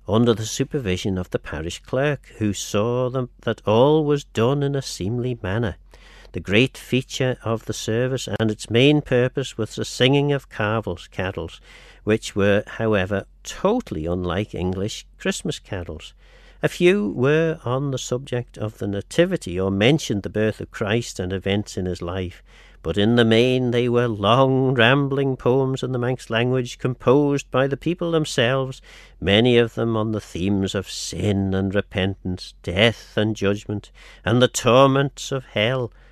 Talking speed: 160 wpm